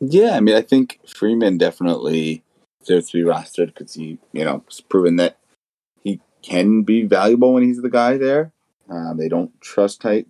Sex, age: male, 30-49